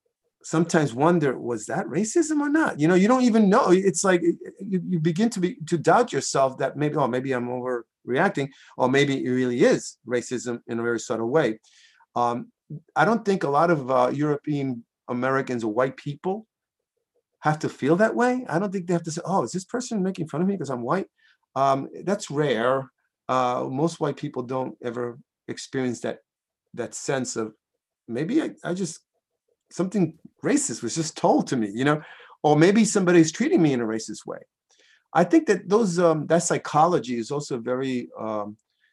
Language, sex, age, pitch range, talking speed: English, male, 30-49, 120-175 Hz, 190 wpm